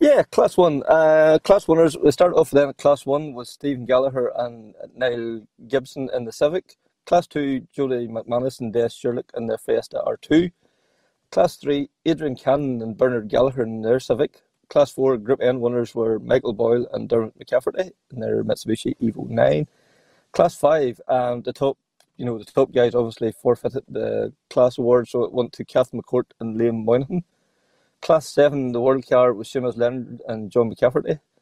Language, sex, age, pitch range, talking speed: English, male, 30-49, 115-140 Hz, 180 wpm